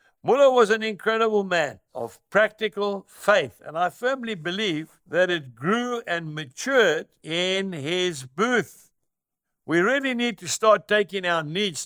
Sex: male